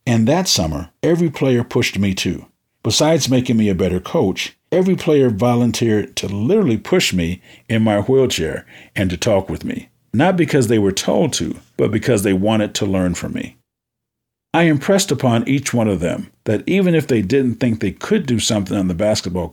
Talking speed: 195 wpm